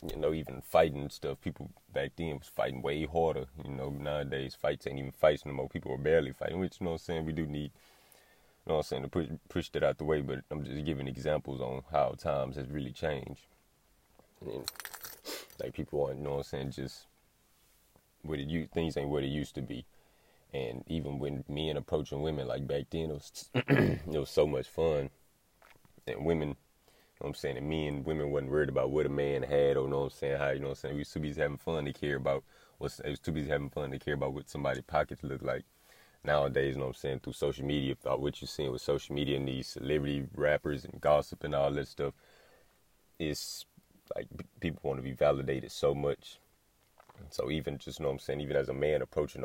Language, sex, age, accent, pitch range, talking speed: English, male, 30-49, American, 70-75 Hz, 230 wpm